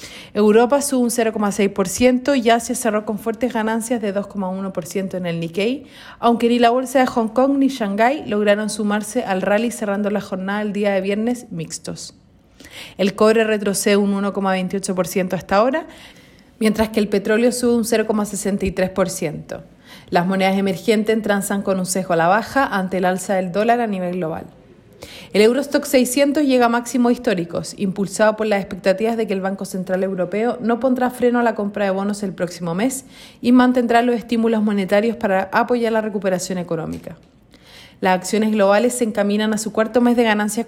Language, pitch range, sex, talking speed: Spanish, 195-235 Hz, female, 175 wpm